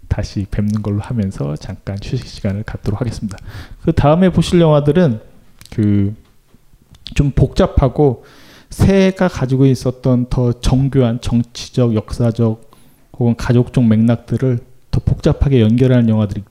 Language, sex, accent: Korean, male, native